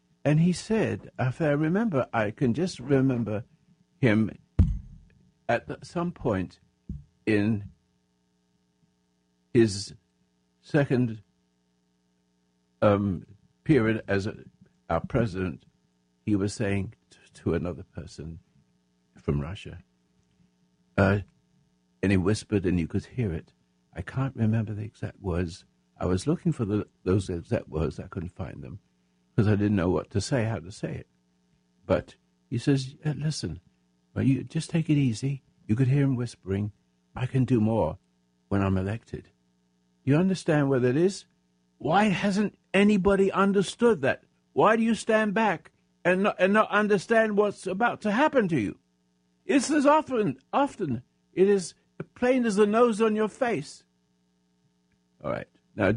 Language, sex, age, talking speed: English, male, 60-79, 140 wpm